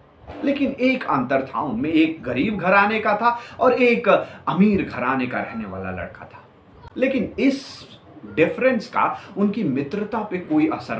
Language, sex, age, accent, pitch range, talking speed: Hindi, male, 30-49, native, 145-245 Hz, 160 wpm